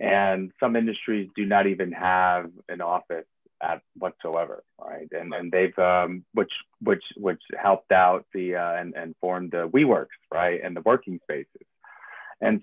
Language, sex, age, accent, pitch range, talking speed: English, male, 30-49, American, 95-115 Hz, 165 wpm